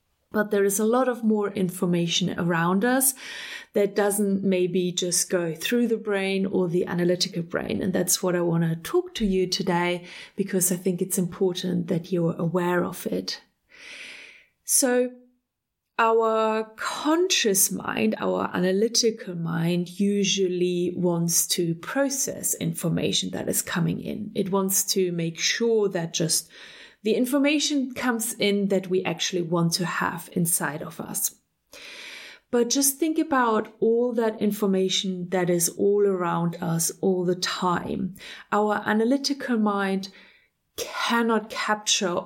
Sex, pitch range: female, 180-225 Hz